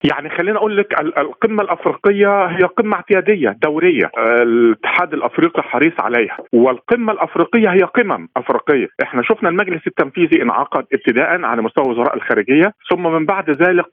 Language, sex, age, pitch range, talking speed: Arabic, male, 50-69, 130-210 Hz, 140 wpm